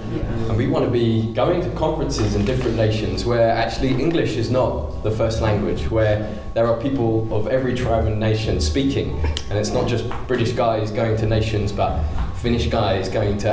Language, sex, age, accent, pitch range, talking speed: English, male, 20-39, British, 100-125 Hz, 190 wpm